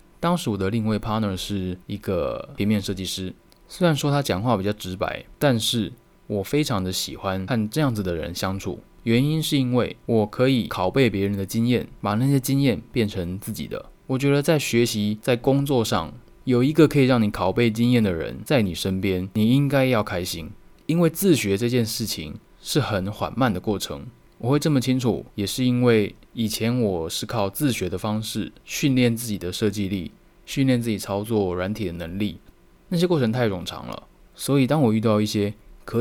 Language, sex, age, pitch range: Chinese, male, 20-39, 100-130 Hz